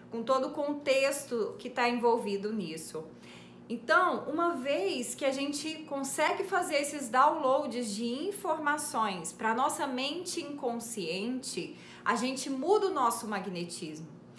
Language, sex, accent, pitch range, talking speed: Portuguese, female, Brazilian, 220-295 Hz, 130 wpm